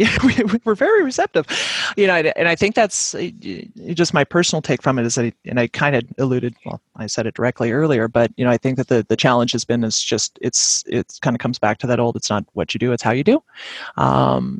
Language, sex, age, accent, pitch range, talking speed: English, male, 30-49, American, 120-145 Hz, 250 wpm